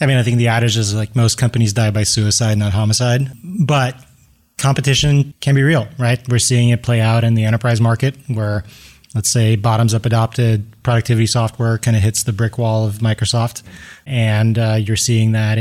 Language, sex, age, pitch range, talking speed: English, male, 20-39, 110-130 Hz, 195 wpm